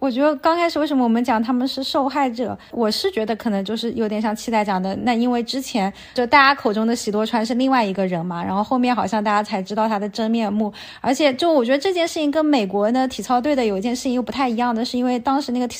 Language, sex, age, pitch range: Chinese, female, 20-39, 220-270 Hz